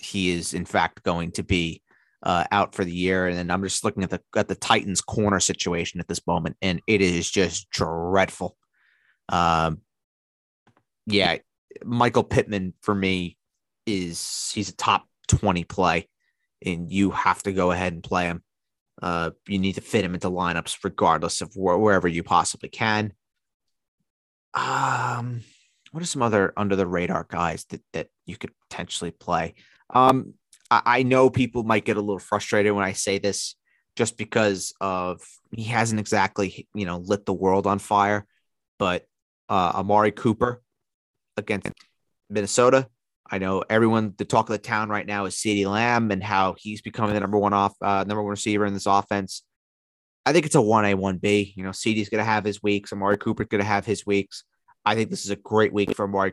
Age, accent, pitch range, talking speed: 30-49, American, 95-105 Hz, 180 wpm